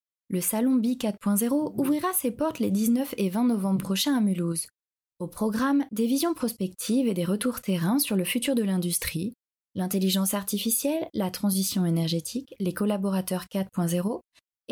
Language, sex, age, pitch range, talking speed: French, female, 20-39, 185-245 Hz, 150 wpm